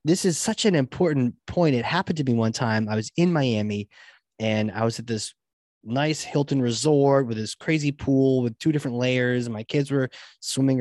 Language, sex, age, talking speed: English, male, 20-39, 200 wpm